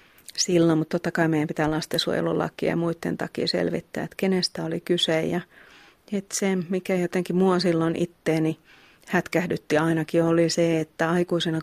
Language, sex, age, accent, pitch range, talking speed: Finnish, female, 30-49, native, 160-180 Hz, 150 wpm